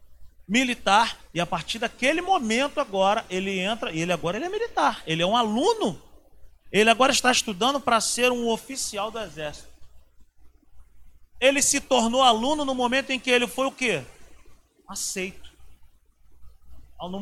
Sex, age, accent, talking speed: male, 40-59, Brazilian, 145 wpm